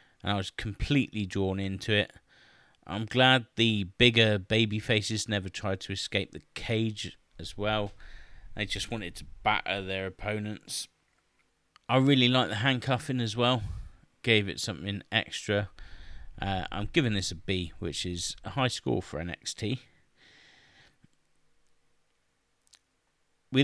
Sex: male